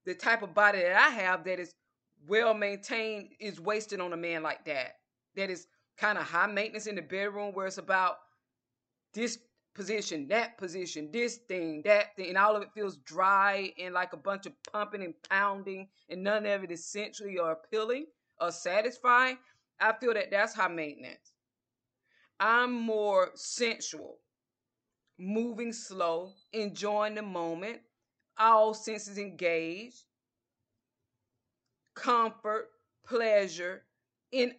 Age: 20-39